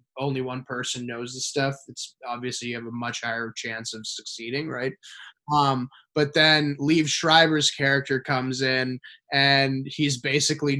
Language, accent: English, American